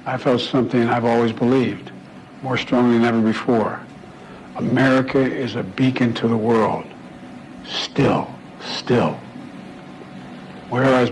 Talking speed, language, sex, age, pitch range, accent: 115 wpm, English, male, 60-79, 120-140 Hz, American